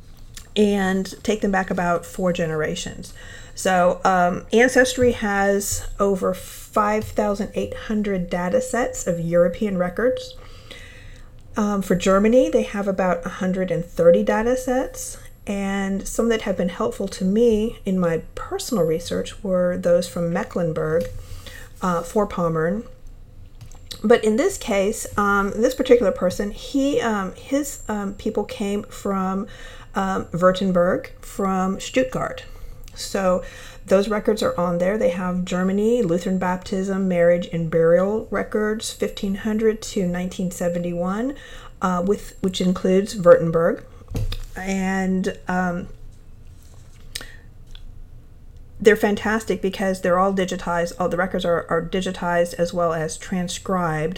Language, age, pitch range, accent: English, 40-59, 170-210 Hz, American